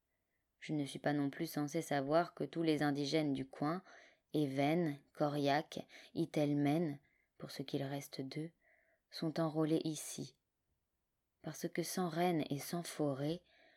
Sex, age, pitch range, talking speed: female, 20-39, 140-160 Hz, 140 wpm